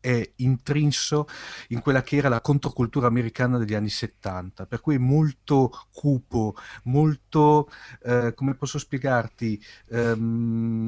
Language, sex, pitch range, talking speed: Italian, male, 120-150 Hz, 120 wpm